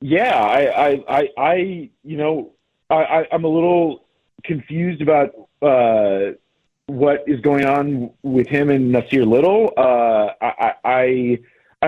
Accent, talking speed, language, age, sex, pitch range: American, 130 wpm, English, 30-49, male, 125-155 Hz